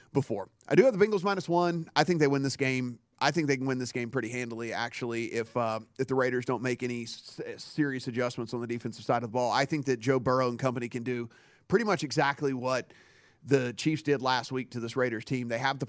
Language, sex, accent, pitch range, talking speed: English, male, American, 120-140 Hz, 255 wpm